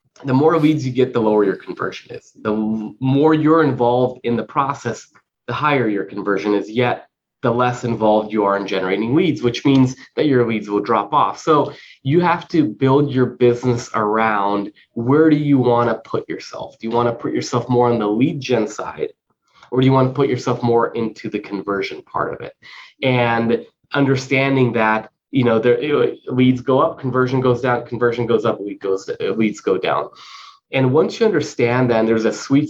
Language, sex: English, male